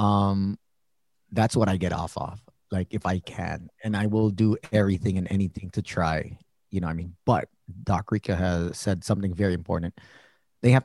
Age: 30-49